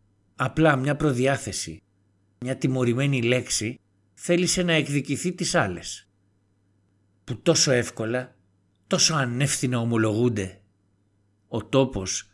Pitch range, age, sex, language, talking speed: 100-125 Hz, 60-79, male, Greek, 90 wpm